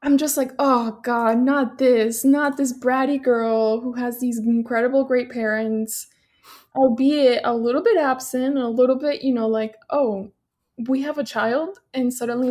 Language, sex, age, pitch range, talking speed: English, female, 20-39, 225-275 Hz, 170 wpm